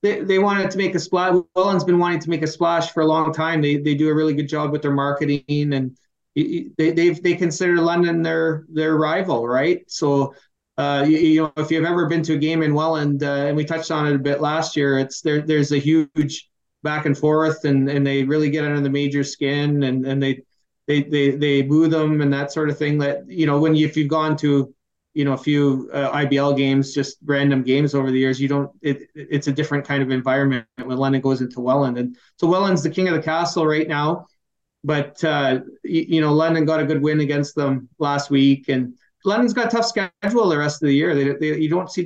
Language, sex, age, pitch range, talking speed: English, male, 30-49, 140-160 Hz, 240 wpm